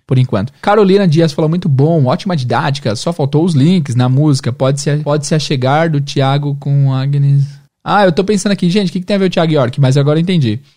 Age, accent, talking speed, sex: 20-39, Brazilian, 235 wpm, male